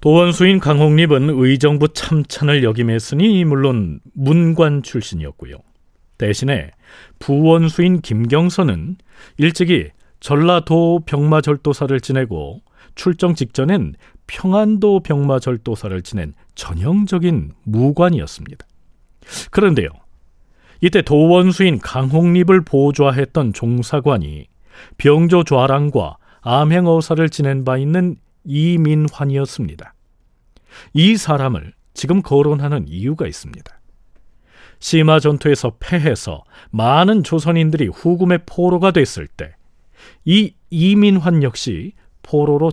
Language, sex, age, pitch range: Korean, male, 40-59, 120-175 Hz